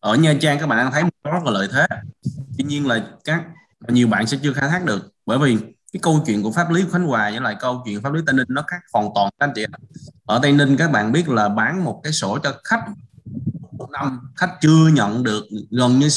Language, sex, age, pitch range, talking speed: Vietnamese, male, 20-39, 110-145 Hz, 260 wpm